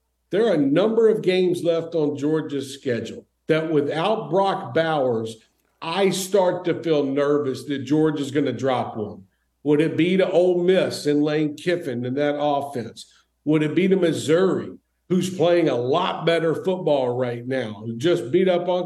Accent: American